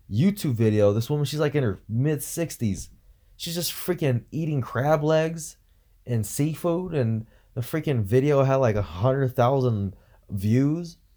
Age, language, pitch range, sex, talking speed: 20-39, English, 100-140 Hz, male, 145 wpm